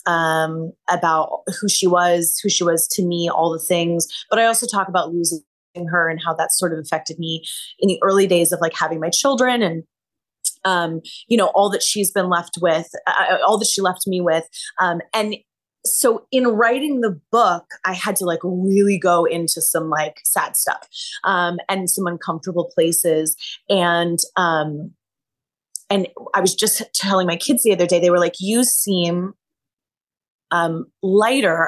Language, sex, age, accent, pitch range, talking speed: English, female, 20-39, American, 170-210 Hz, 180 wpm